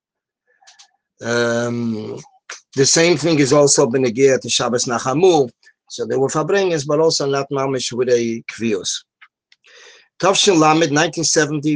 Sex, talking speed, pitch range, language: male, 115 wpm, 125-155 Hz, English